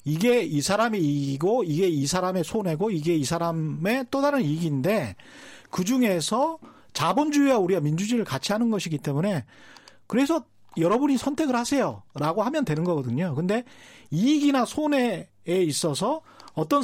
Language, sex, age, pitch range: Korean, male, 40-59, 155-255 Hz